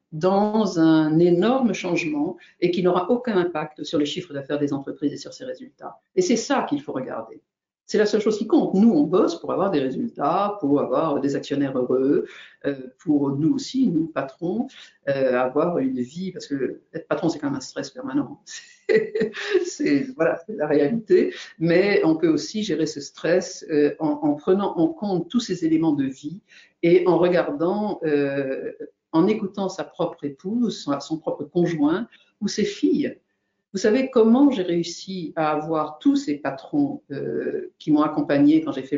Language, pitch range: French, 145-235 Hz